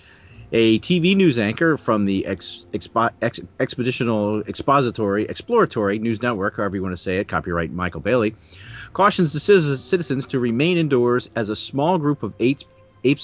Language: English